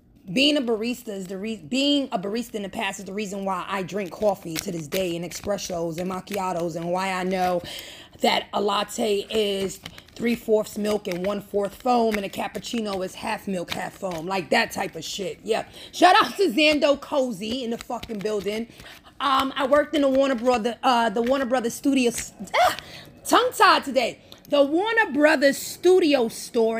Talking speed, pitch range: 190 wpm, 190-240 Hz